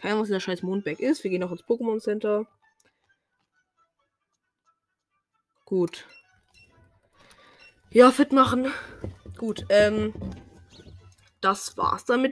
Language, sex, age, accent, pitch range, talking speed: German, female, 20-39, German, 195-330 Hz, 110 wpm